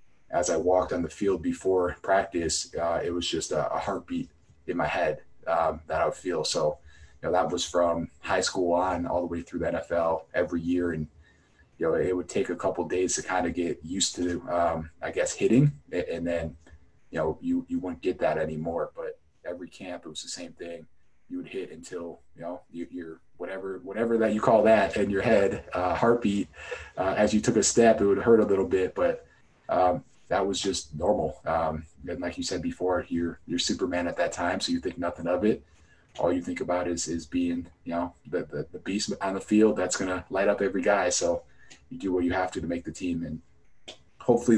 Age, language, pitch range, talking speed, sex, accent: 20-39, English, 85-105 Hz, 225 wpm, male, American